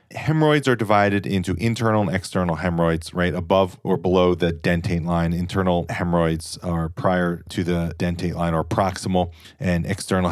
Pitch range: 85-105 Hz